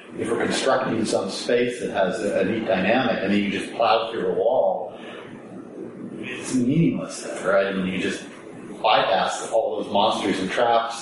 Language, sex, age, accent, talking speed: English, male, 40-59, American, 175 wpm